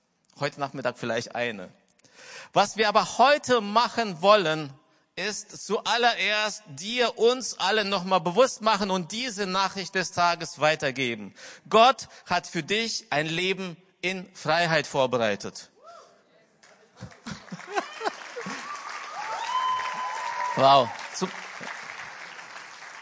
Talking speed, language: 90 wpm, German